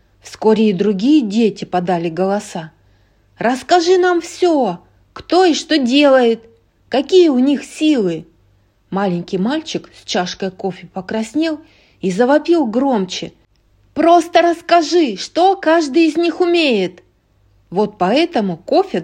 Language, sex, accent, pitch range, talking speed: Russian, female, native, 175-280 Hz, 115 wpm